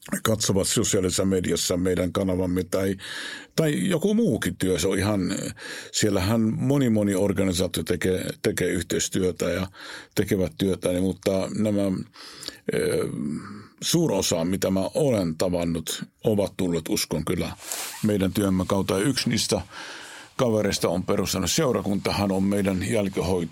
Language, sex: Finnish, male